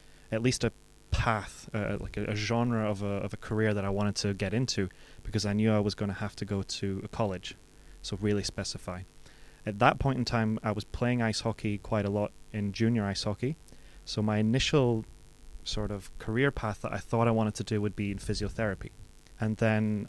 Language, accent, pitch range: English, British, 100-115 Hz